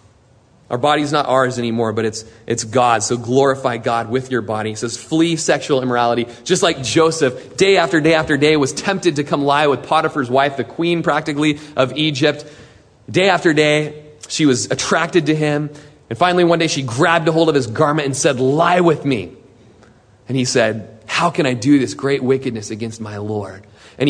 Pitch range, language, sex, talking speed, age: 110-155 Hz, English, male, 195 wpm, 30-49